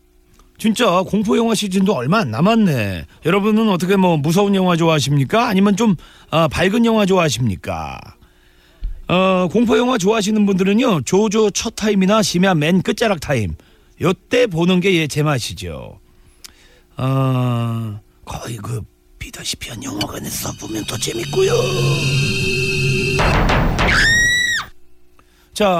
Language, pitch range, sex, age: Korean, 130-210 Hz, male, 40-59